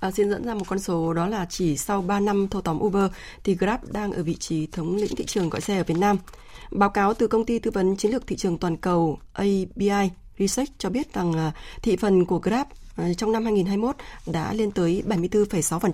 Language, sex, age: Vietnamese, female, 20-39